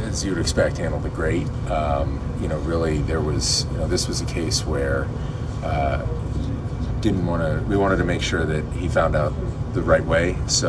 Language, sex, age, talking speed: English, male, 30-49, 195 wpm